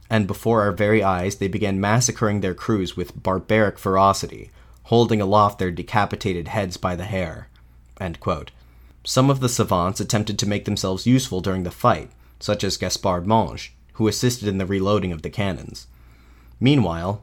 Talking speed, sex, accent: 165 wpm, male, American